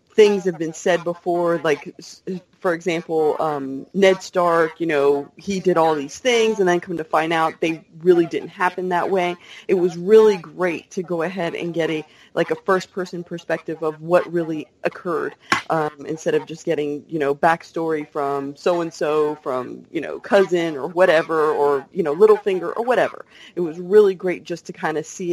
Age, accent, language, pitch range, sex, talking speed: 30-49, American, English, 160-190 Hz, female, 195 wpm